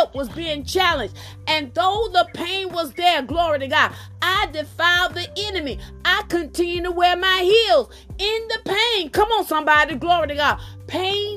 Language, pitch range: English, 310-370 Hz